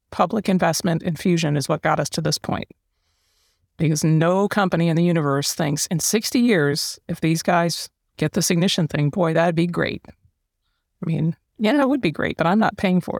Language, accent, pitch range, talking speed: English, American, 155-185 Hz, 200 wpm